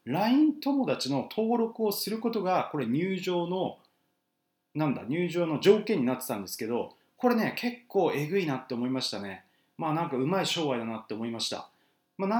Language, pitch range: Japanese, 145-215 Hz